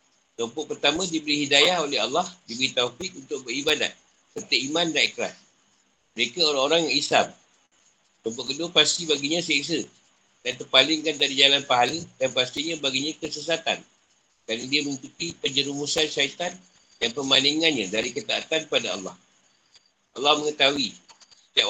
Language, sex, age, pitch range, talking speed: Malay, male, 50-69, 125-165 Hz, 125 wpm